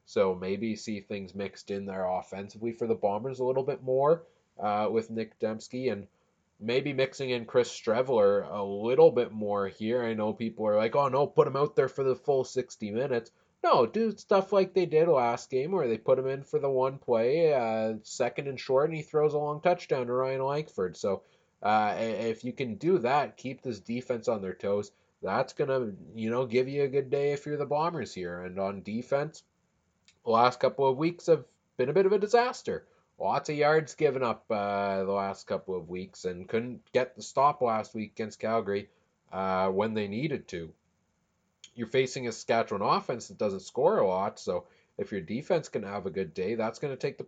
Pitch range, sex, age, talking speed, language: 105-145 Hz, male, 20-39, 215 wpm, English